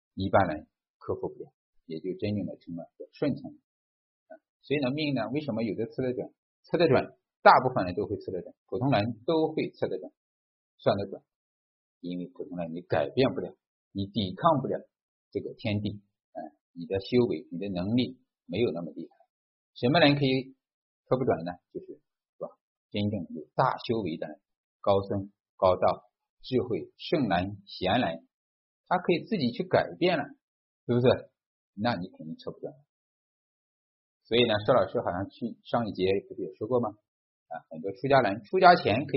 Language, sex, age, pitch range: Chinese, male, 50-69, 95-150 Hz